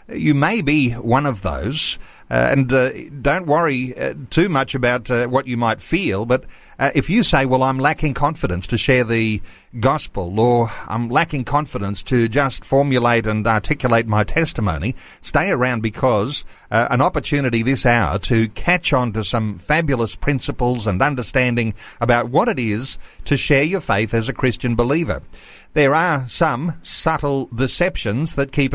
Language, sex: English, male